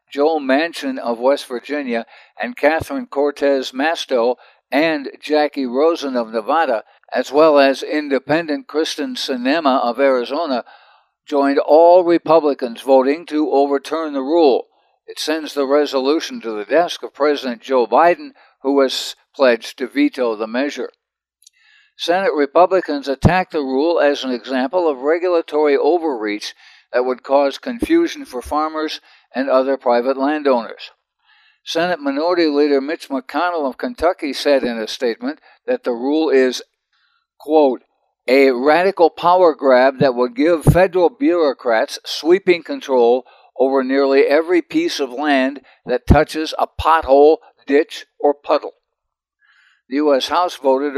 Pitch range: 135-180 Hz